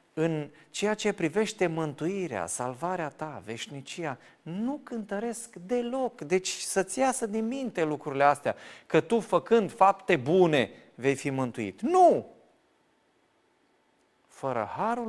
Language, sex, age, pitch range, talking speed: Romanian, male, 40-59, 125-200 Hz, 115 wpm